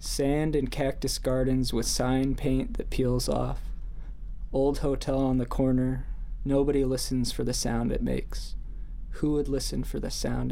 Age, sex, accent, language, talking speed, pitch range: 20-39, male, American, English, 160 wpm, 115-135 Hz